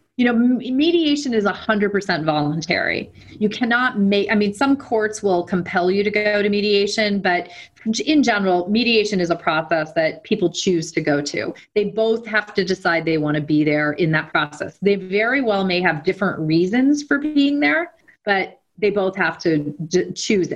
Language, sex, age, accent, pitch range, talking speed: English, female, 30-49, American, 170-225 Hz, 180 wpm